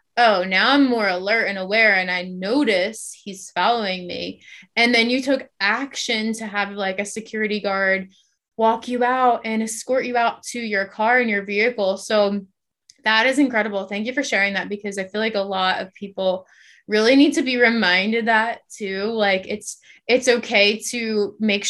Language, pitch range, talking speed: English, 190-225 Hz, 185 wpm